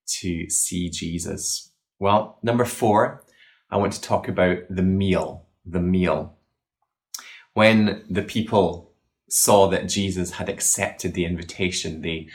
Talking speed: 125 wpm